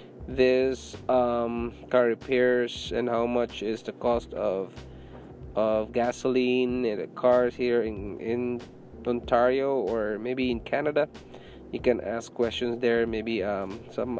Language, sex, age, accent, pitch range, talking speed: English, male, 20-39, Filipino, 110-125 Hz, 135 wpm